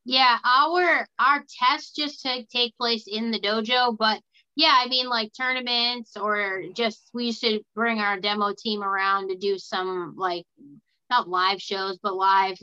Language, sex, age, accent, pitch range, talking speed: English, female, 30-49, American, 190-235 Hz, 165 wpm